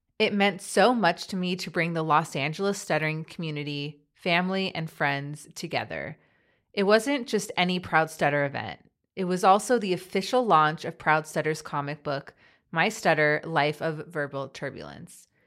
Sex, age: female, 20-39